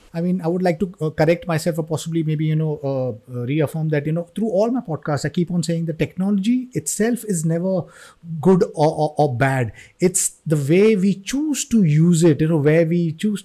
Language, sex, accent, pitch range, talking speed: English, male, Indian, 155-190 Hz, 220 wpm